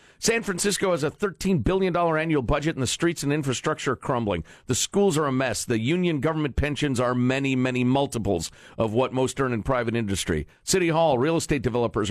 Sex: male